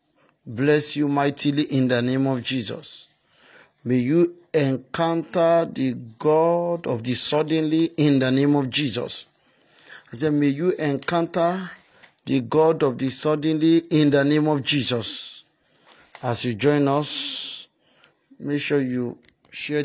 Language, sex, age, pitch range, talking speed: English, male, 50-69, 125-150 Hz, 135 wpm